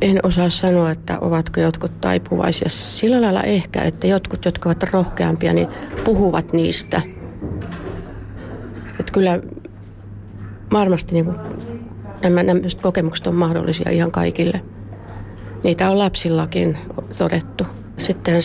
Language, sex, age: Finnish, female, 30-49